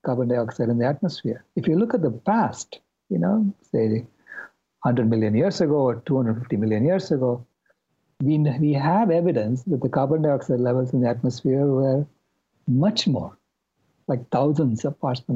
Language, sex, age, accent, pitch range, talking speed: English, male, 60-79, Indian, 120-170 Hz, 170 wpm